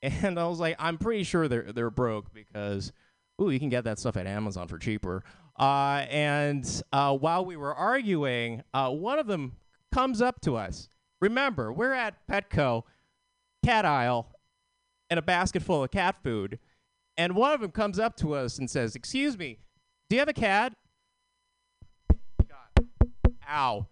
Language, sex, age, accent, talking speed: English, male, 30-49, American, 170 wpm